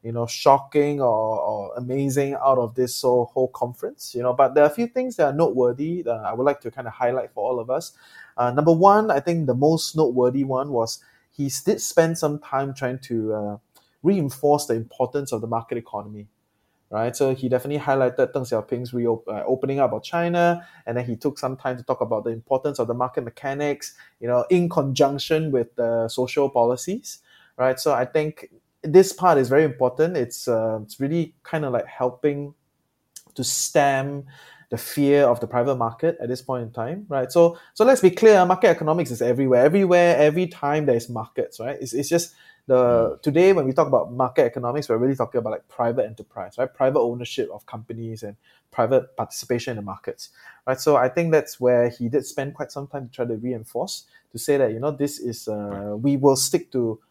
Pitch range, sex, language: 120-150 Hz, male, English